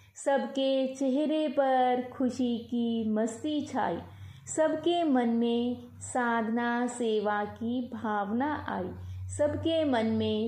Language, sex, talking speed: Hindi, female, 105 wpm